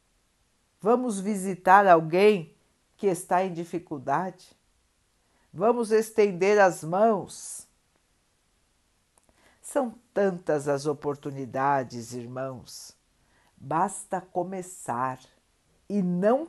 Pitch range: 160-230 Hz